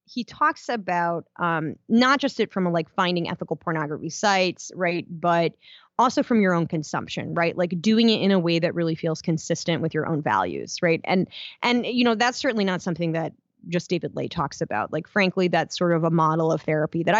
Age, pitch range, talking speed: 20-39, 165-210 Hz, 215 wpm